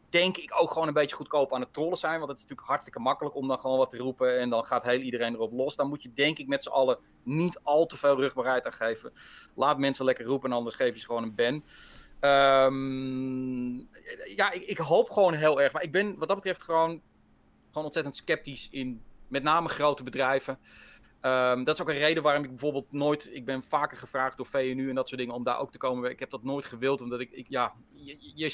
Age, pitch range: 30-49, 130-170 Hz